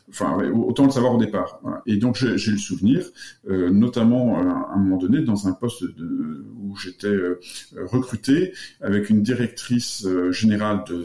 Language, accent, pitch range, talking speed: French, French, 100-130 Hz, 165 wpm